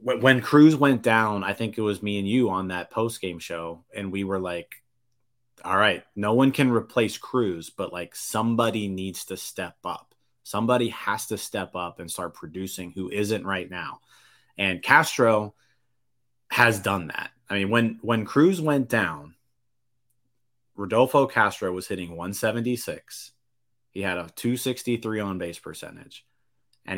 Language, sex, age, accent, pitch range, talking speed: English, male, 30-49, American, 90-115 Hz, 155 wpm